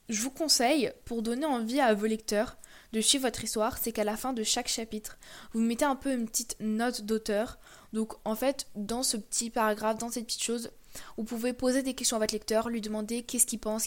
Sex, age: female, 20-39